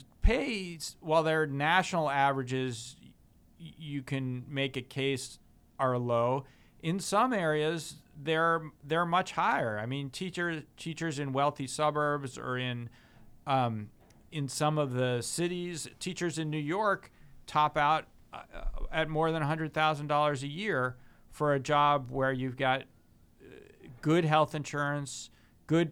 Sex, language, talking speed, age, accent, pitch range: male, English, 140 wpm, 40-59, American, 125-155 Hz